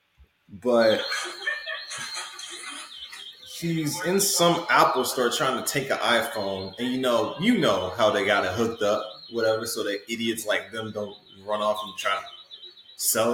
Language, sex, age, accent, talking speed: English, male, 20-39, American, 160 wpm